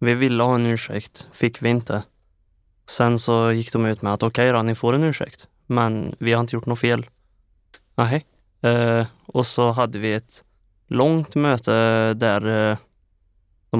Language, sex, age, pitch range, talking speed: Swedish, male, 20-39, 105-125 Hz, 175 wpm